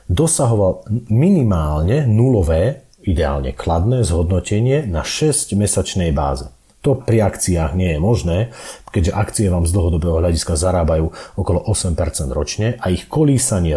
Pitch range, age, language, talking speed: 85-115 Hz, 40-59, Slovak, 120 wpm